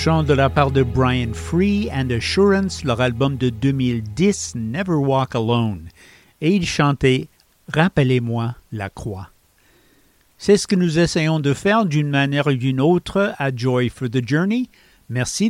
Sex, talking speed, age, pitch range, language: male, 165 wpm, 60-79, 125-165 Hz, English